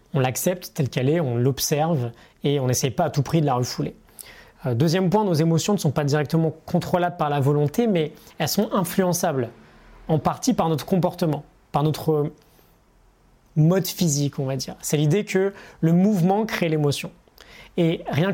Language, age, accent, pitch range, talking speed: French, 20-39, French, 140-180 Hz, 175 wpm